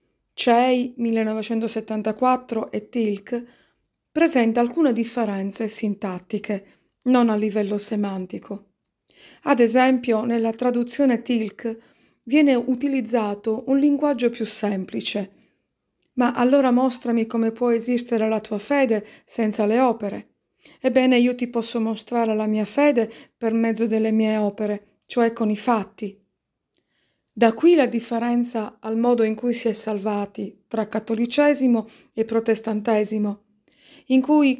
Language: Italian